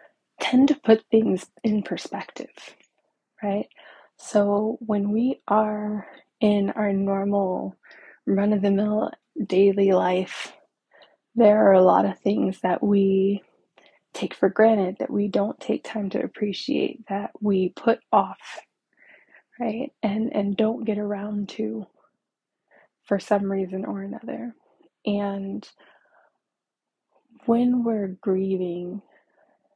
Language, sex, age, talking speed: English, female, 20-39, 110 wpm